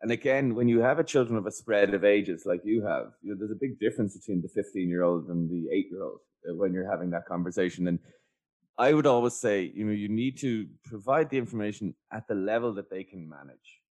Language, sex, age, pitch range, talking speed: English, male, 20-39, 95-115 Hz, 240 wpm